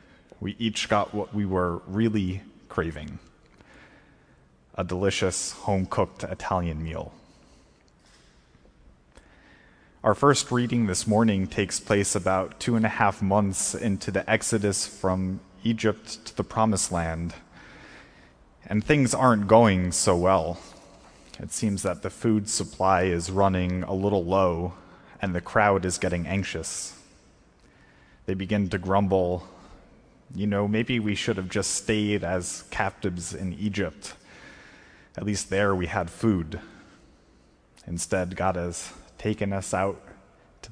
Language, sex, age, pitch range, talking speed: English, male, 30-49, 90-105 Hz, 130 wpm